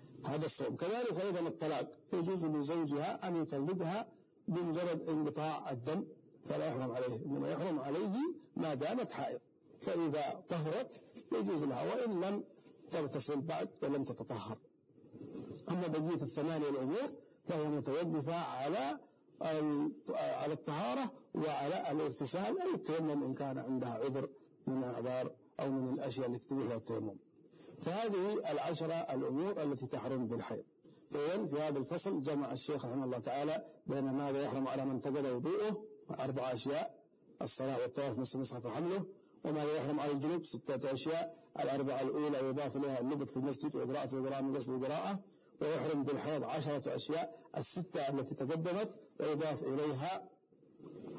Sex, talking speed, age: male, 130 wpm, 50-69